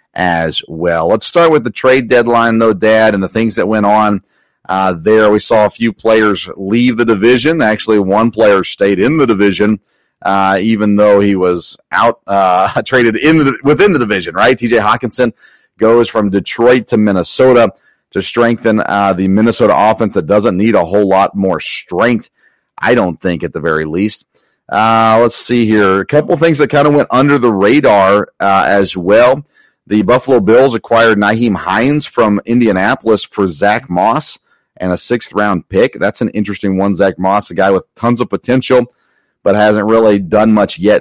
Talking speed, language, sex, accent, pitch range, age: 180 wpm, English, male, American, 100-125 Hz, 40-59